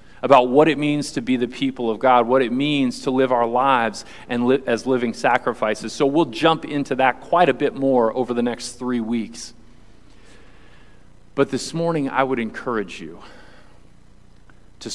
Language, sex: English, male